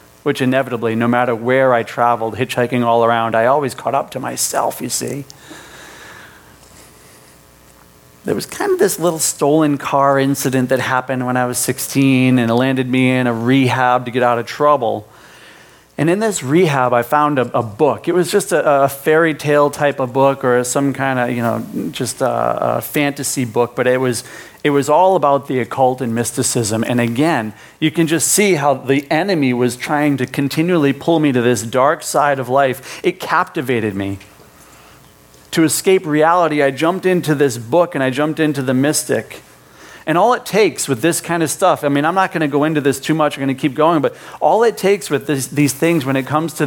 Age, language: 40-59, English